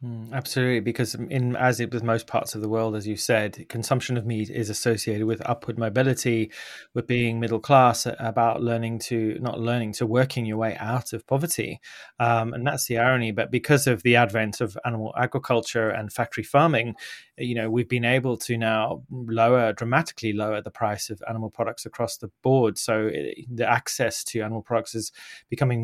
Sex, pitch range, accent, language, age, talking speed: male, 110-125 Hz, British, English, 20-39, 190 wpm